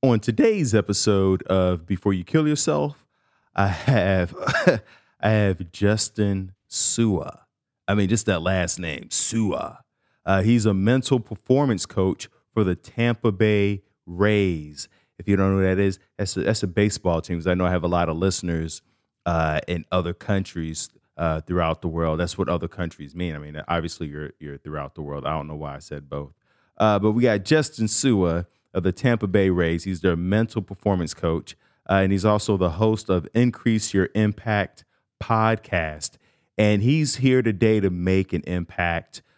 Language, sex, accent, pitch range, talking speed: English, male, American, 85-110 Hz, 175 wpm